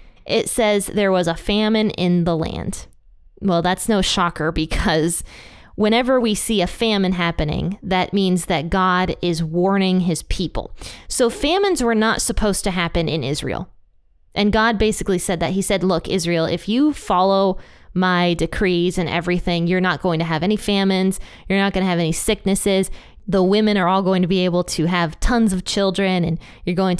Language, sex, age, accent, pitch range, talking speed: English, female, 20-39, American, 175-205 Hz, 185 wpm